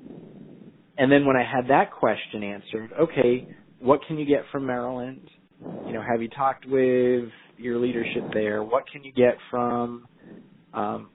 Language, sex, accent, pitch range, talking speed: English, male, American, 115-140 Hz, 160 wpm